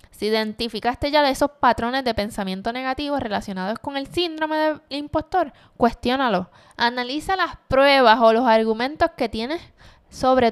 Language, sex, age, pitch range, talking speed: Spanish, female, 10-29, 220-290 Hz, 145 wpm